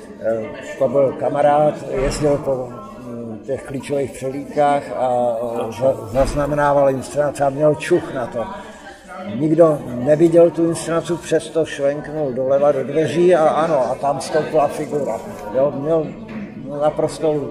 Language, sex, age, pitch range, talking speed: Czech, male, 60-79, 140-165 Hz, 115 wpm